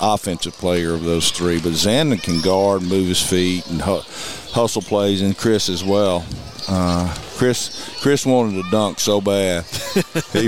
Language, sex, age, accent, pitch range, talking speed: English, male, 50-69, American, 95-110 Hz, 165 wpm